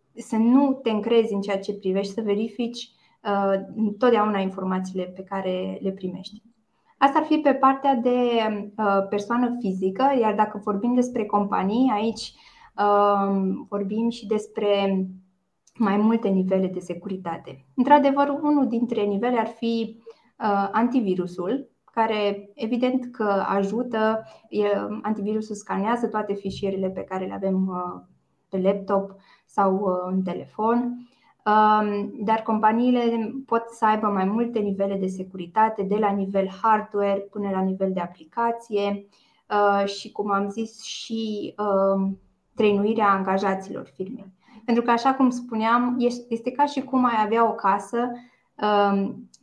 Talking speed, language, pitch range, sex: 135 wpm, Romanian, 195-230 Hz, female